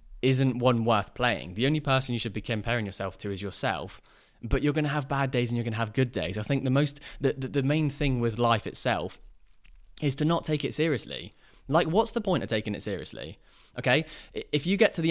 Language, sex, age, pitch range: English, male, 20-39, 105-145 Hz